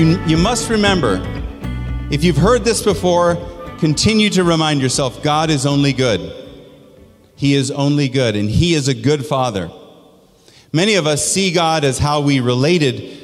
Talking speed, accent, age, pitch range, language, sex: 165 wpm, American, 40-59, 125-170 Hz, English, male